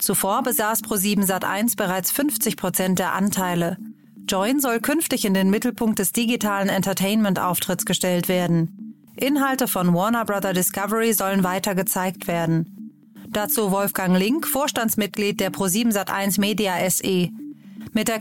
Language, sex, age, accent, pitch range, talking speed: German, female, 30-49, German, 190-230 Hz, 120 wpm